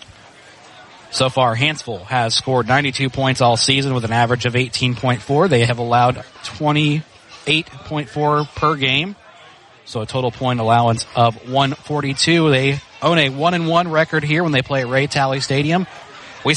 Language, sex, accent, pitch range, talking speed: English, male, American, 115-145 Hz, 150 wpm